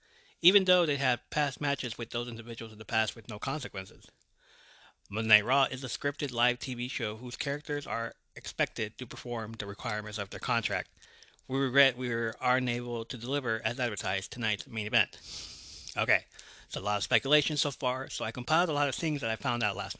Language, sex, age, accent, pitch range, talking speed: English, male, 30-49, American, 110-145 Hz, 205 wpm